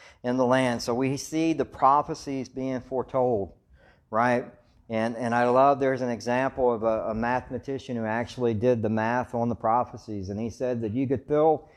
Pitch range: 110-140 Hz